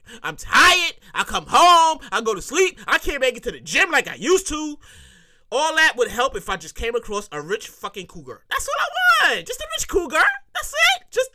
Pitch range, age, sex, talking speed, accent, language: 235-370 Hz, 20-39, male, 235 wpm, American, English